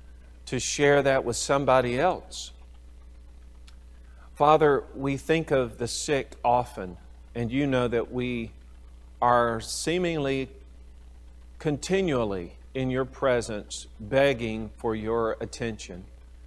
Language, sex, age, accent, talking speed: English, male, 40-59, American, 100 wpm